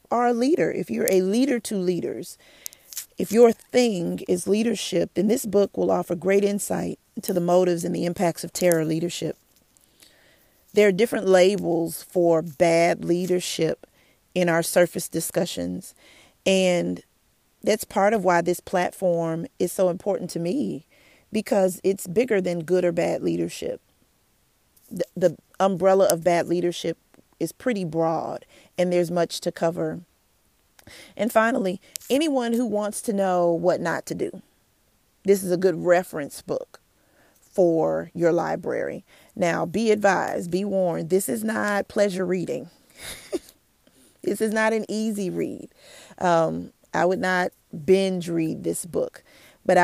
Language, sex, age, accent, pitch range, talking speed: English, female, 40-59, American, 170-200 Hz, 145 wpm